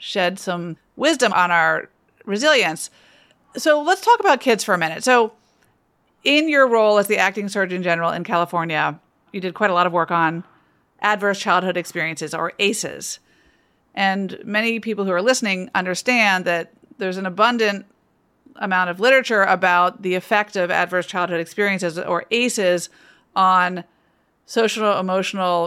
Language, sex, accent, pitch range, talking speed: English, female, American, 185-225 Hz, 150 wpm